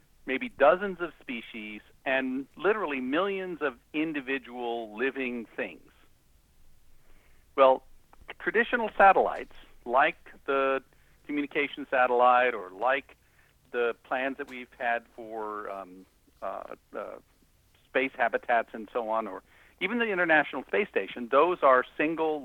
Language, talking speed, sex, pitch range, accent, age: English, 115 wpm, male, 125-160 Hz, American, 60-79